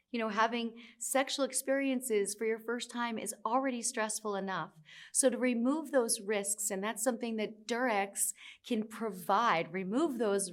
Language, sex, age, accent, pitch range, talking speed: Turkish, female, 40-59, American, 195-240 Hz, 155 wpm